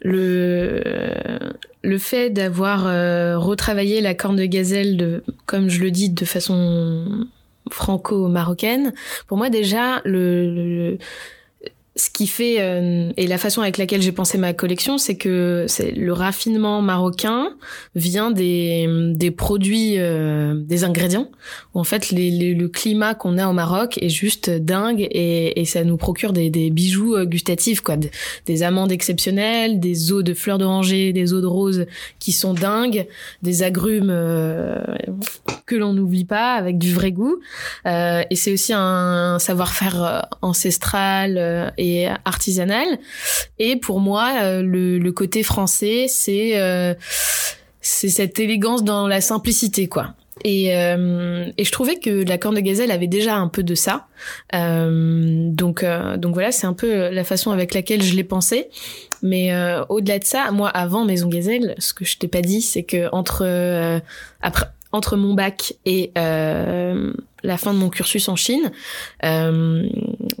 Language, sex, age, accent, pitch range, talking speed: French, female, 20-39, French, 175-210 Hz, 160 wpm